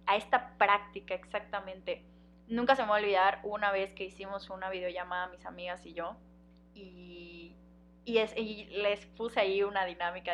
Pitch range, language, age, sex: 180-210 Hz, Spanish, 10-29, female